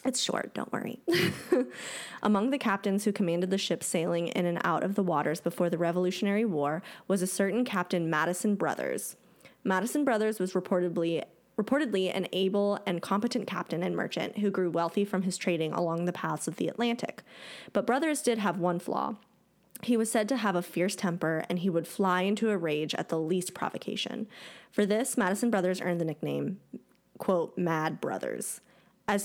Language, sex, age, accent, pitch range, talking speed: English, female, 20-39, American, 175-210 Hz, 180 wpm